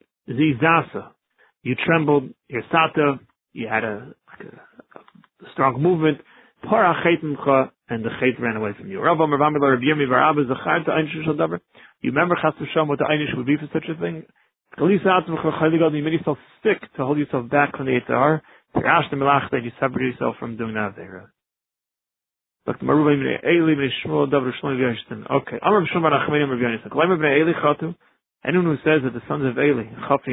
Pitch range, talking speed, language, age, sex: 130-160 Hz, 115 wpm, English, 40-59, male